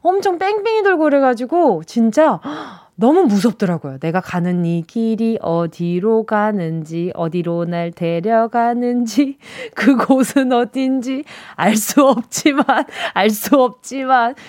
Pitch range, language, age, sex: 215-320 Hz, Korean, 20-39, female